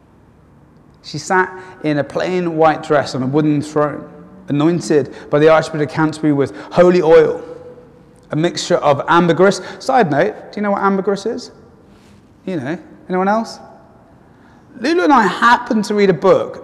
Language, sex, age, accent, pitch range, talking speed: English, male, 30-49, British, 160-215 Hz, 160 wpm